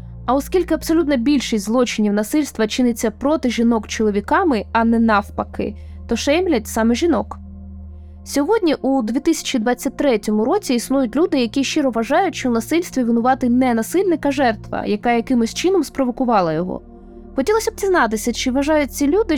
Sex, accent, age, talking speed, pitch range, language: female, native, 20-39, 140 wpm, 225-305 Hz, Ukrainian